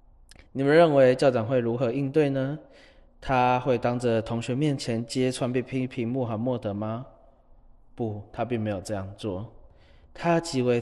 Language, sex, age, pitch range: Chinese, male, 20-39, 110-130 Hz